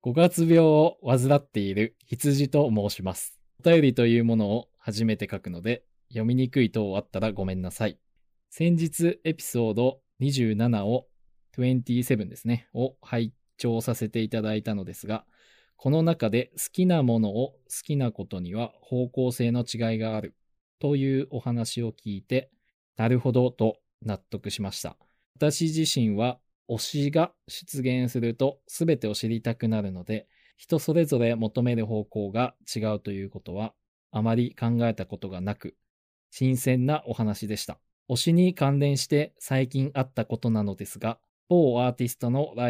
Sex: male